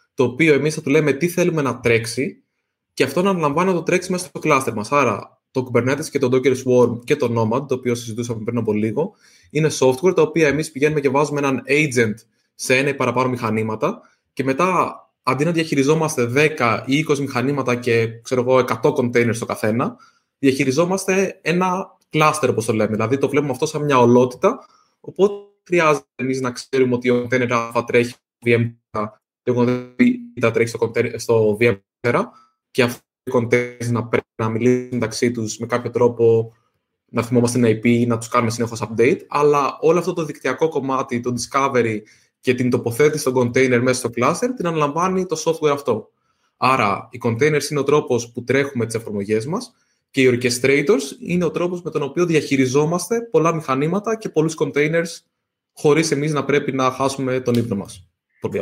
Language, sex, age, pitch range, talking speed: Greek, male, 20-39, 120-150 Hz, 185 wpm